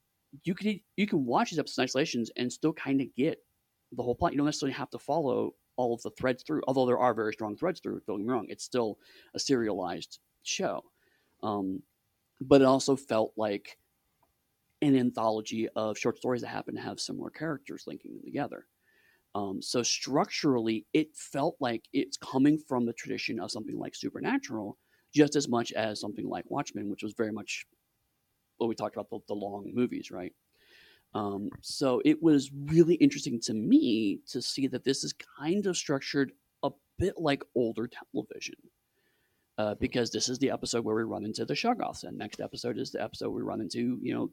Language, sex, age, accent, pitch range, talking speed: English, male, 30-49, American, 115-150 Hz, 190 wpm